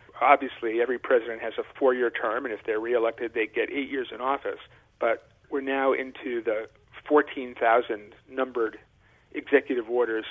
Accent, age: American, 40-59